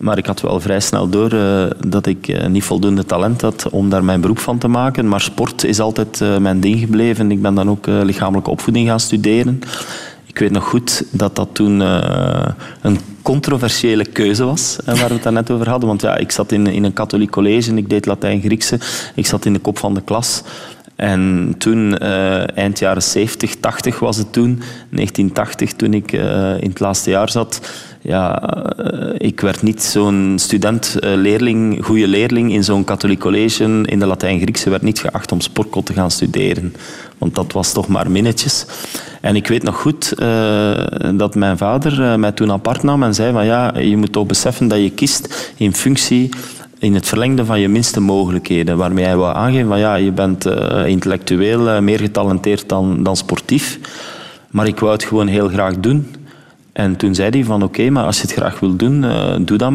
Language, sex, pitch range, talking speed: Dutch, male, 100-115 Hz, 205 wpm